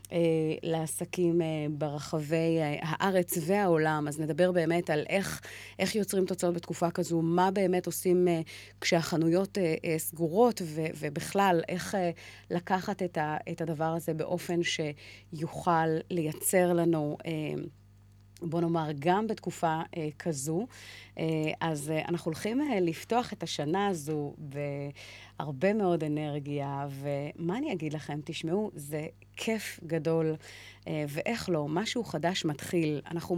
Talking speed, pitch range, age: 135 wpm, 155-185 Hz, 30-49